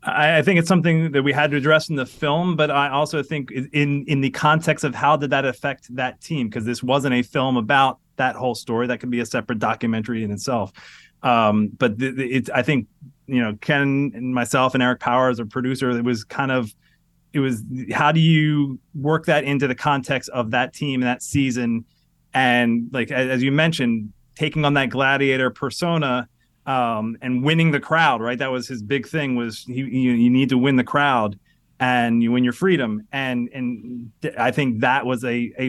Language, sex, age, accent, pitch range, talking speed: English, male, 30-49, American, 120-145 Hz, 205 wpm